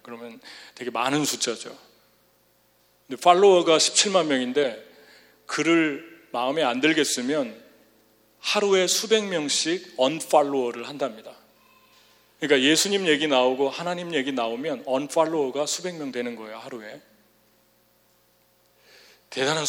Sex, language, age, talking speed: male, English, 40-59, 95 wpm